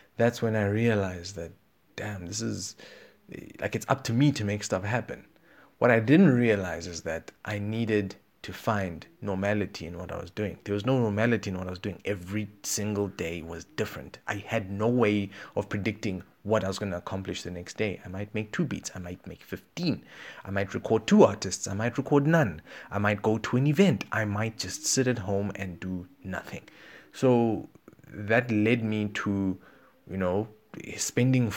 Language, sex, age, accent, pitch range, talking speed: English, male, 30-49, South African, 95-120 Hz, 195 wpm